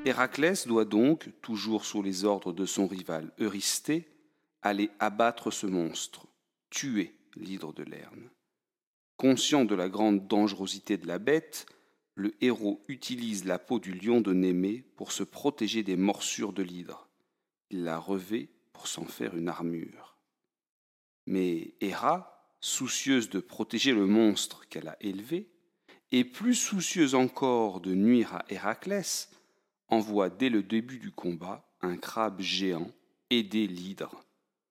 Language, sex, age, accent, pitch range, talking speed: French, male, 40-59, French, 95-120 Hz, 140 wpm